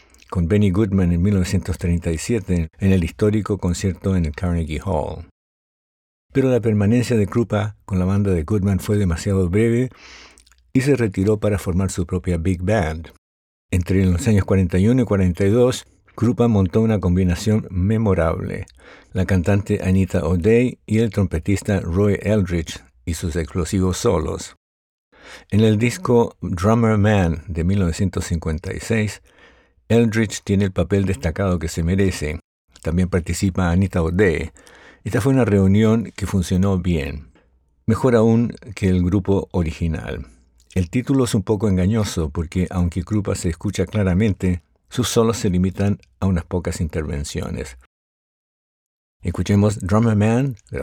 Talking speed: 140 wpm